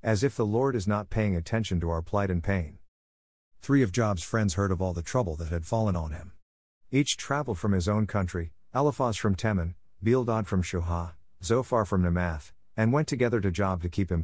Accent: American